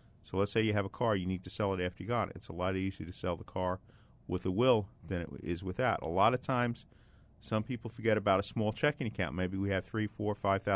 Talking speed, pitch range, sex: 260 wpm, 90-115 Hz, male